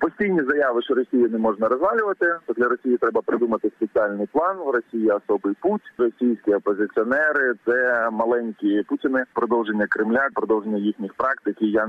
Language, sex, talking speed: Ukrainian, male, 135 wpm